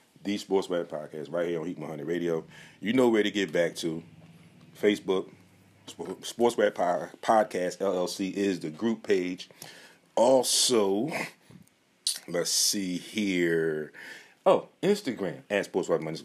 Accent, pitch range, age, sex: American, 80-95 Hz, 30-49, male